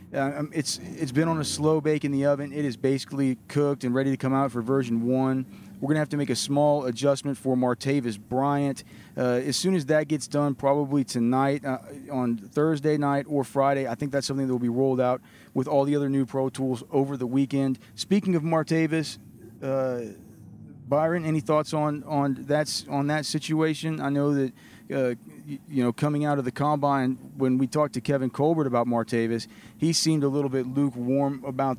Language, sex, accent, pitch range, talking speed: English, male, American, 125-145 Hz, 205 wpm